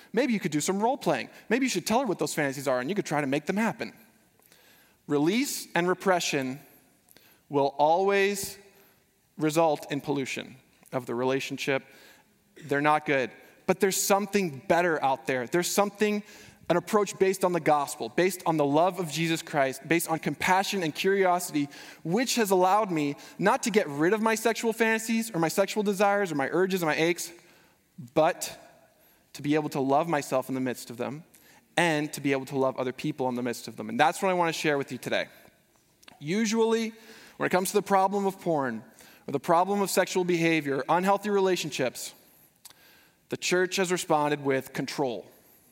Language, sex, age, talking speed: English, male, 20-39, 190 wpm